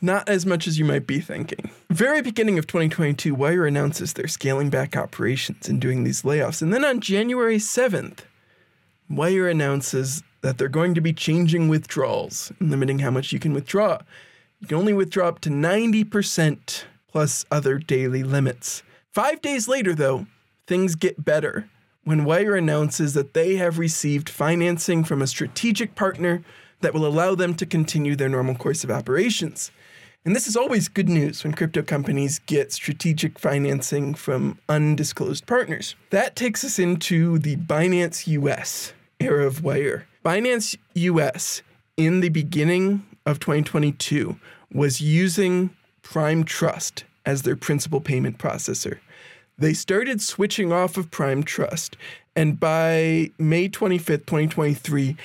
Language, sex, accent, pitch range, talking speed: English, male, American, 145-185 Hz, 150 wpm